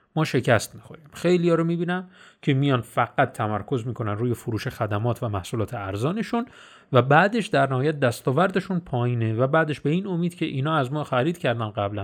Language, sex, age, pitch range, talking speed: Persian, male, 30-49, 115-160 Hz, 175 wpm